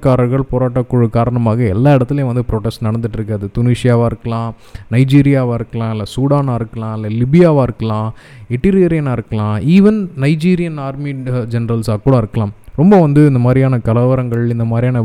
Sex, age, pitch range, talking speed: male, 20-39, 115-145 Hz, 125 wpm